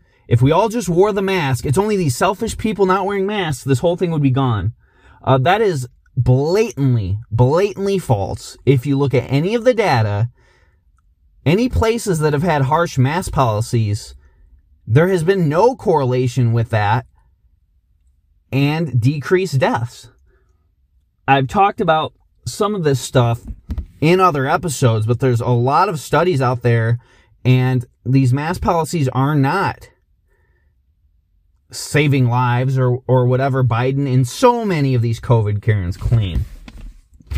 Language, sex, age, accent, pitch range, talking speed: English, male, 30-49, American, 105-155 Hz, 145 wpm